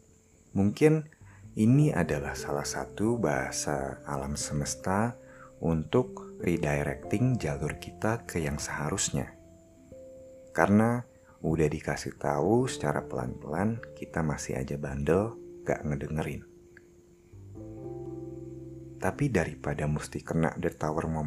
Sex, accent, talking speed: male, native, 95 wpm